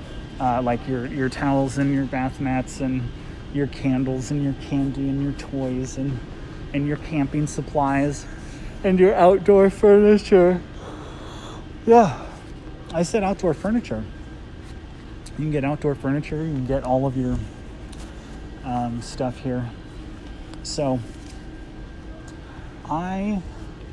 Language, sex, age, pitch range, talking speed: English, male, 30-49, 125-150 Hz, 120 wpm